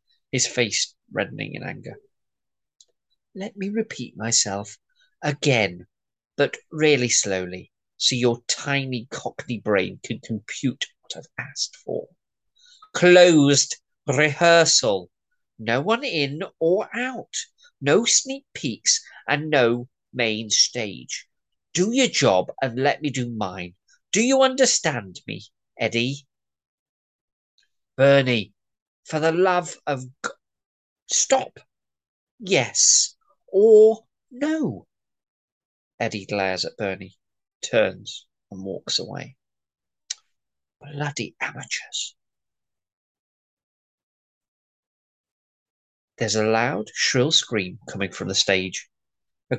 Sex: male